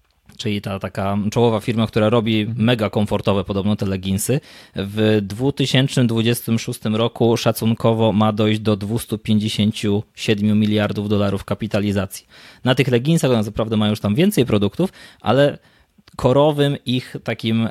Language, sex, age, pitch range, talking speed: Polish, male, 20-39, 105-130 Hz, 125 wpm